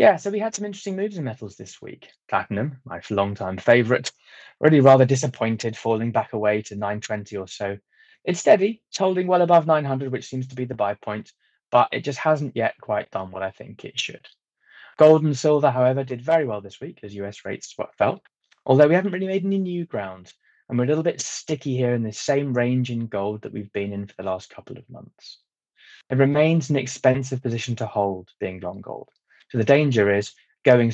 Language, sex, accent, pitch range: English, male, British, 105-140 Hz